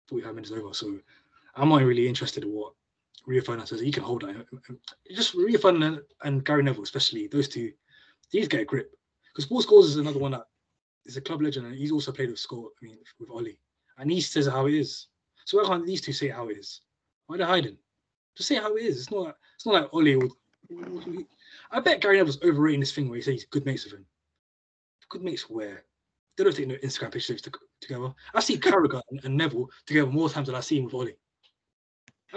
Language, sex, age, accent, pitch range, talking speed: English, male, 20-39, British, 125-165 Hz, 235 wpm